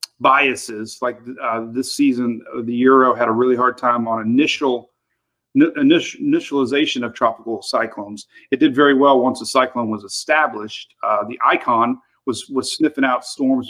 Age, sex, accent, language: 40-59, male, American, English